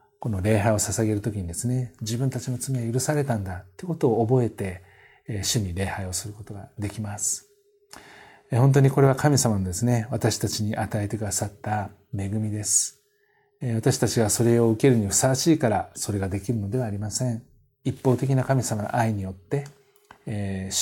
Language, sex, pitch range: Japanese, male, 100-125 Hz